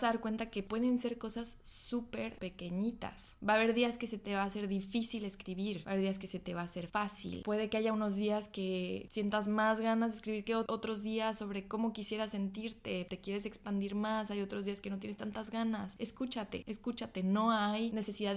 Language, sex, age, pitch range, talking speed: Spanish, female, 20-39, 190-225 Hz, 215 wpm